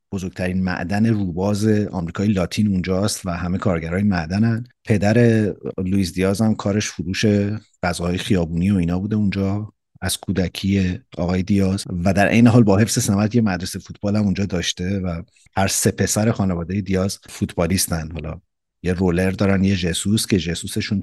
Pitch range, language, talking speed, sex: 90-110 Hz, Persian, 155 wpm, male